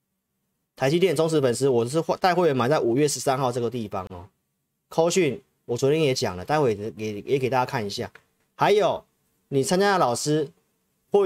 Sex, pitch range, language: male, 120-170 Hz, Chinese